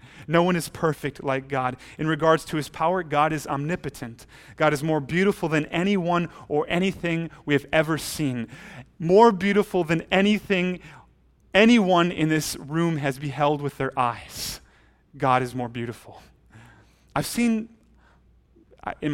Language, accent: English, American